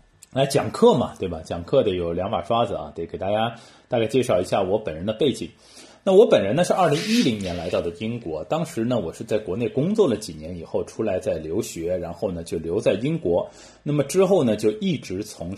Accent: native